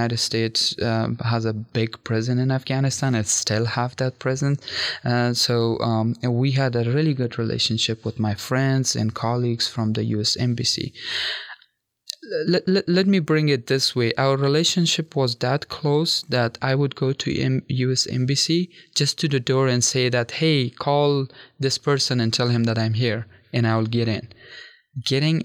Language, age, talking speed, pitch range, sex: English, 20-39, 165 wpm, 115-140 Hz, male